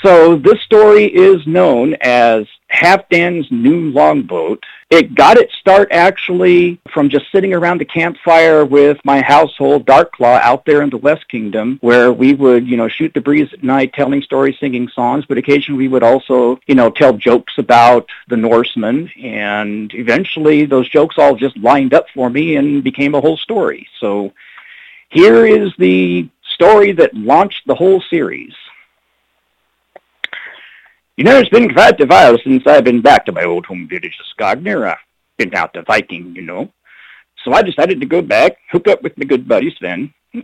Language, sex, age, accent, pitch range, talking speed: English, male, 50-69, American, 130-205 Hz, 180 wpm